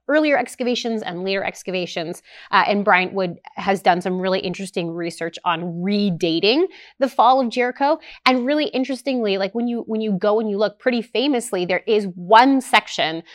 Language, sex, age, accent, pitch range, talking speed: English, female, 30-49, American, 175-230 Hz, 175 wpm